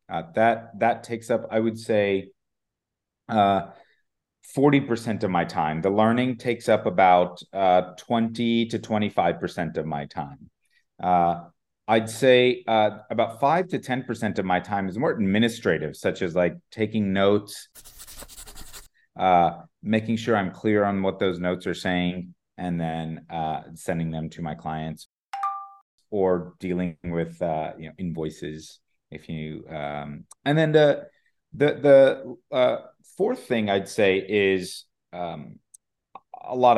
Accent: American